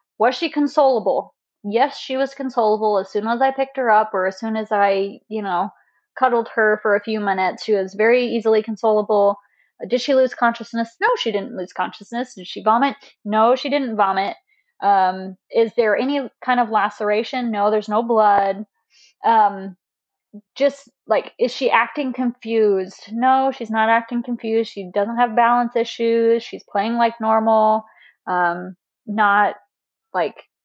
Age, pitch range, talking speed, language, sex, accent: 20-39, 210-250 Hz, 165 wpm, English, female, American